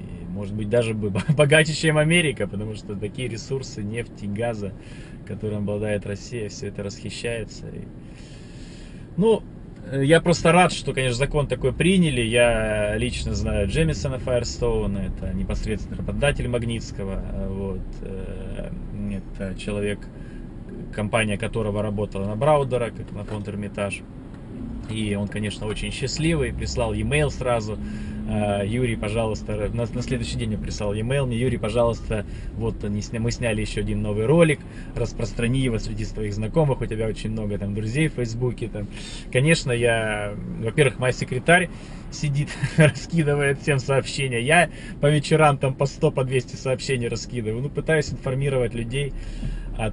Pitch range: 105-135 Hz